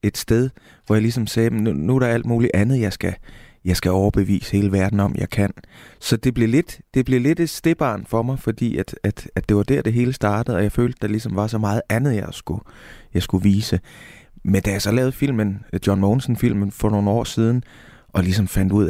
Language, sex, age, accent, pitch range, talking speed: Danish, male, 20-39, native, 95-115 Hz, 240 wpm